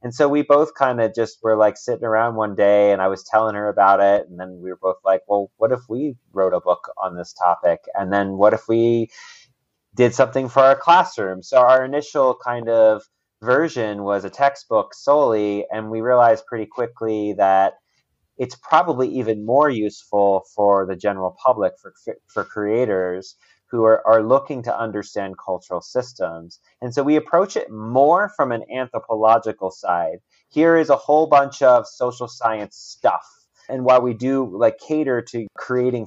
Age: 30-49